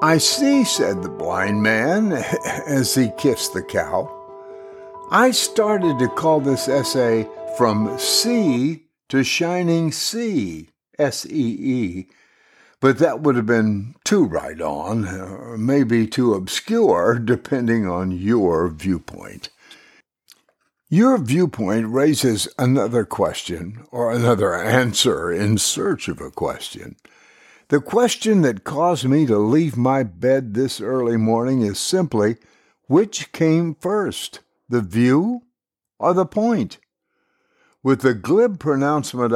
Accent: American